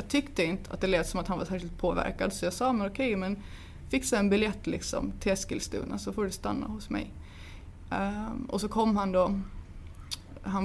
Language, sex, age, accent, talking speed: Swedish, female, 20-39, native, 210 wpm